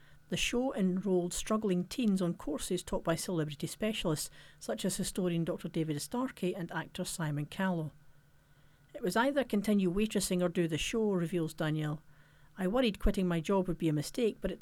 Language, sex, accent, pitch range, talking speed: English, female, British, 155-195 Hz, 175 wpm